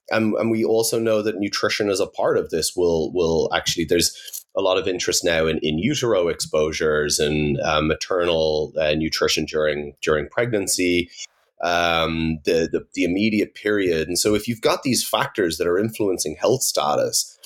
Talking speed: 175 wpm